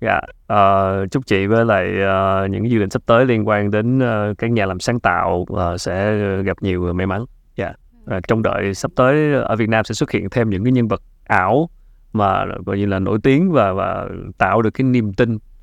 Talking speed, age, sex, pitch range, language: 240 wpm, 20-39, male, 100-125 Hz, Vietnamese